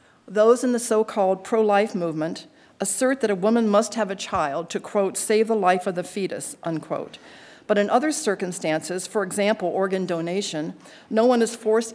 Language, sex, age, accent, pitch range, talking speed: English, female, 50-69, American, 175-220 Hz, 175 wpm